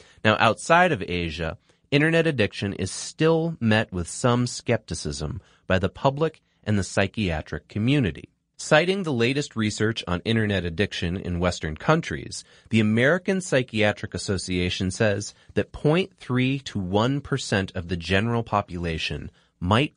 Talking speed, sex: 130 wpm, male